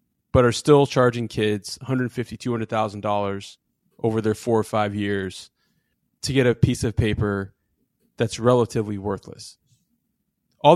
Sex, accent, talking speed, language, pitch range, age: male, American, 130 wpm, English, 110-140 Hz, 20-39